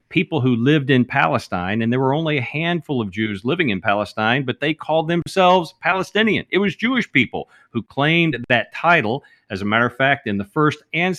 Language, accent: English, American